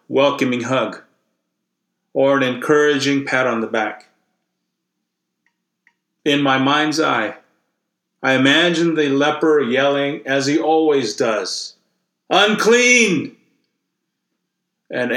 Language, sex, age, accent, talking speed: English, male, 40-59, American, 95 wpm